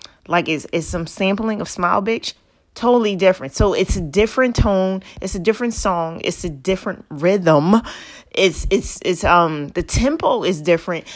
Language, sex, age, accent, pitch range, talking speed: English, female, 30-49, American, 175-230 Hz, 165 wpm